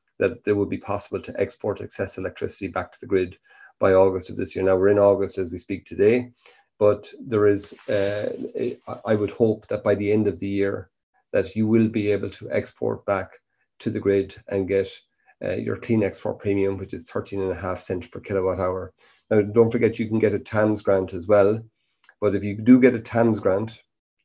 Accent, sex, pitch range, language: Irish, male, 95-105 Hz, English